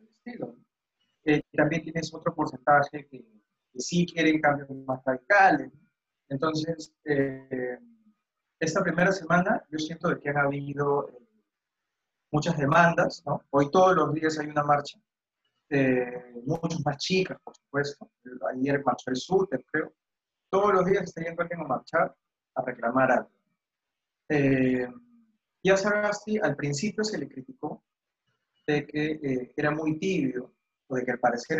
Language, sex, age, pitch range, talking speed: Spanish, male, 30-49, 135-180 Hz, 145 wpm